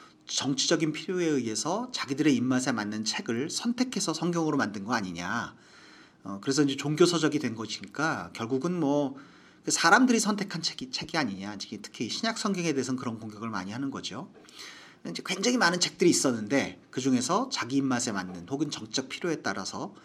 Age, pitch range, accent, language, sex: 40-59, 130-185 Hz, native, Korean, male